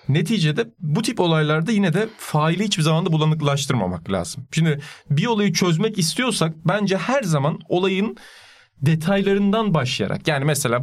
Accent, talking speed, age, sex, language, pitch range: native, 135 wpm, 40-59, male, Turkish, 135-180 Hz